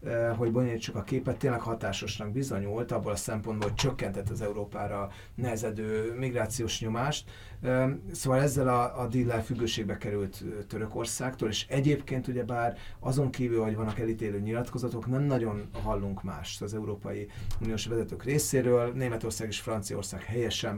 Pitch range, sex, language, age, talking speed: 105-125 Hz, male, Hungarian, 30-49, 140 wpm